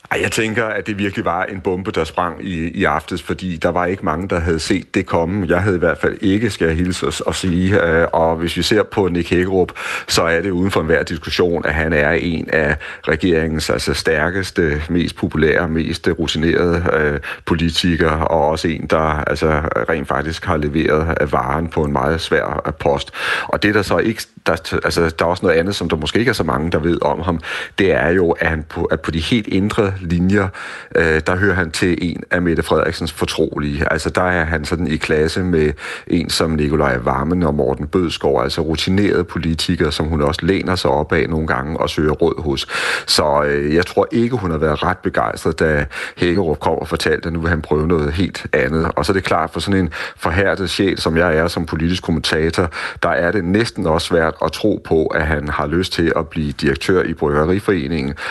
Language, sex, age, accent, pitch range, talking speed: Danish, male, 40-59, native, 80-90 Hz, 215 wpm